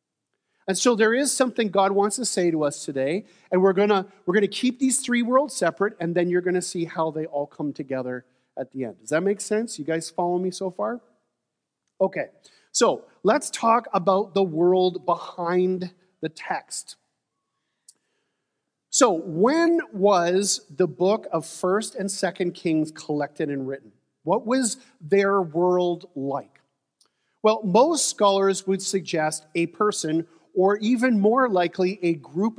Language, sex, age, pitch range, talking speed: English, male, 40-59, 160-205 Hz, 165 wpm